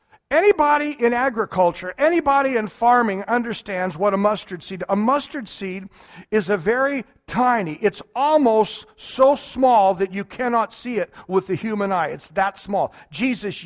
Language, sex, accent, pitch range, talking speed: English, male, American, 215-310 Hz, 155 wpm